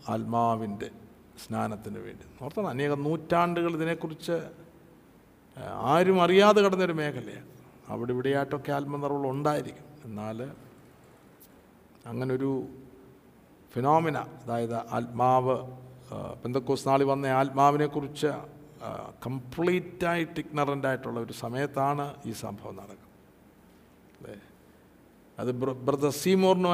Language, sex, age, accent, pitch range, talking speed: Malayalam, male, 50-69, native, 115-145 Hz, 85 wpm